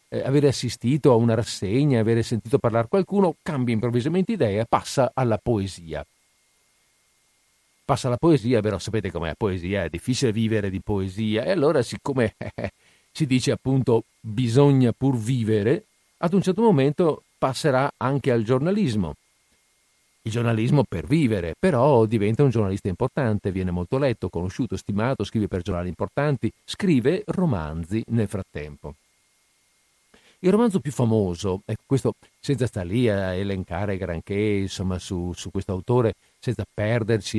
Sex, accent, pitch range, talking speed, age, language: male, native, 105-140 Hz, 140 wpm, 50-69, Italian